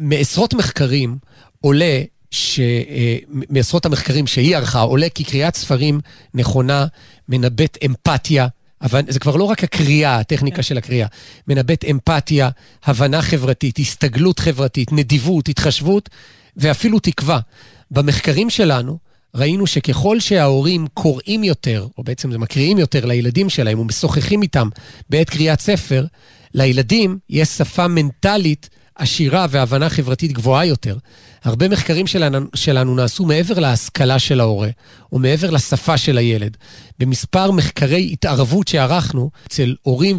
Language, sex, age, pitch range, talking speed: Hebrew, male, 40-59, 130-170 Hz, 120 wpm